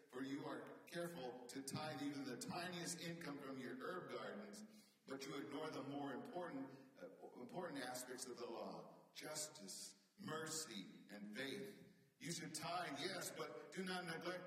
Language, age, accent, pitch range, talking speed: English, 50-69, American, 145-195 Hz, 160 wpm